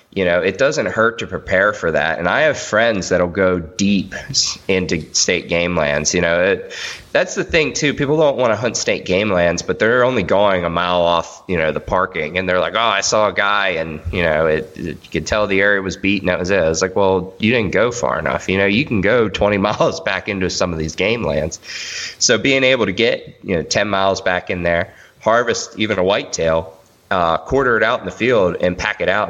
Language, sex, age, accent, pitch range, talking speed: English, male, 20-39, American, 85-95 Hz, 245 wpm